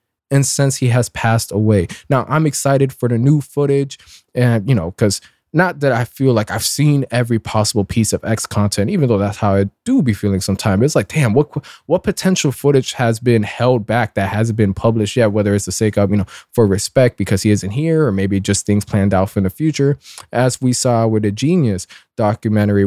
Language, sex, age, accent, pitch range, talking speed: English, male, 20-39, American, 105-135 Hz, 220 wpm